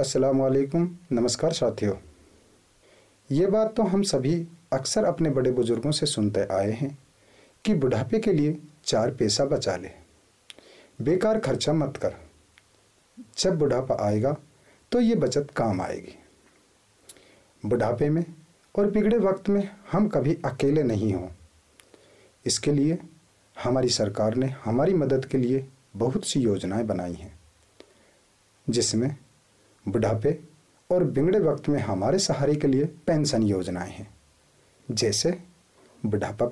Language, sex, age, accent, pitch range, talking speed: English, male, 40-59, Indian, 110-160 Hz, 125 wpm